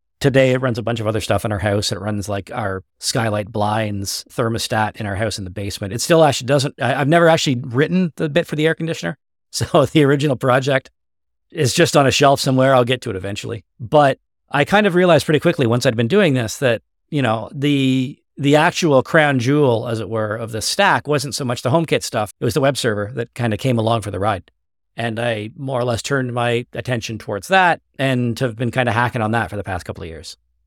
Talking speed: 240 wpm